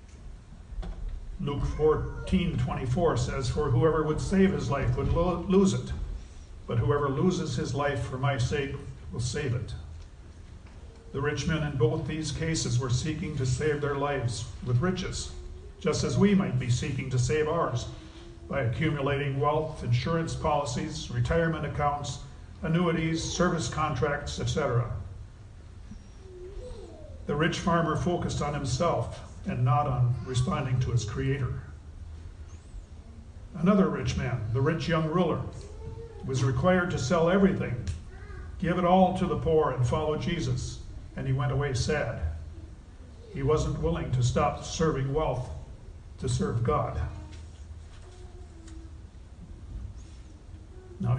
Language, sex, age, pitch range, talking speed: English, male, 50-69, 90-155 Hz, 130 wpm